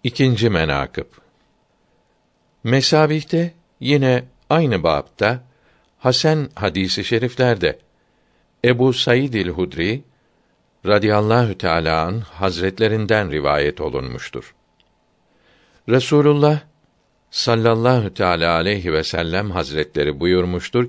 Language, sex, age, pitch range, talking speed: Turkish, male, 60-79, 90-125 Hz, 75 wpm